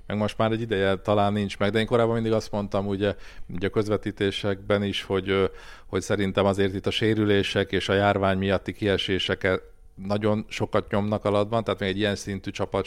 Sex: male